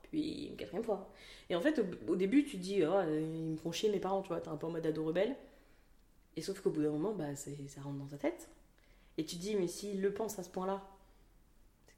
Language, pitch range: French, 155-205 Hz